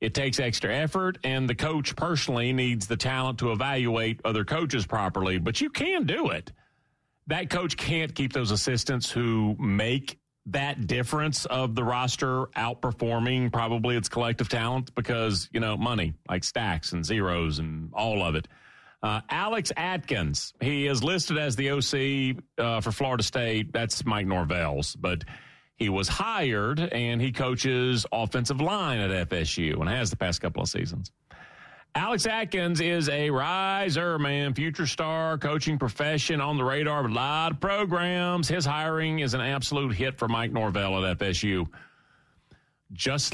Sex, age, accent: male, 40-59, American